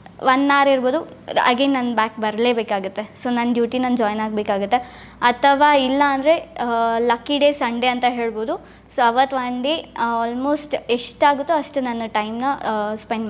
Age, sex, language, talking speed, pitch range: 20-39, female, Kannada, 135 wpm, 235-280 Hz